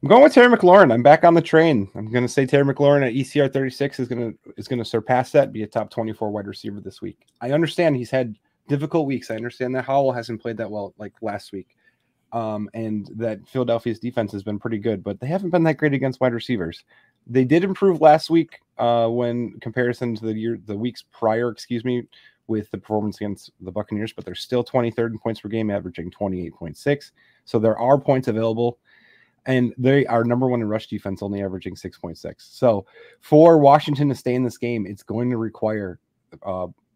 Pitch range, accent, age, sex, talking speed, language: 105-130 Hz, American, 30-49, male, 210 wpm, English